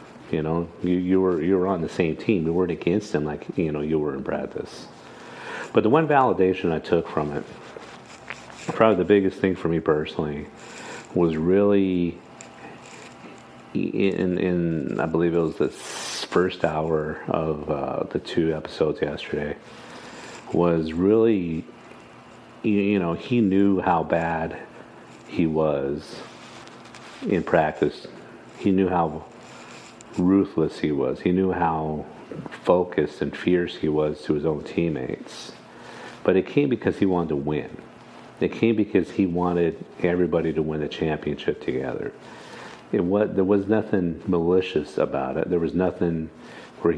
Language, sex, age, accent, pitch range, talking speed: English, male, 50-69, American, 80-95 Hz, 145 wpm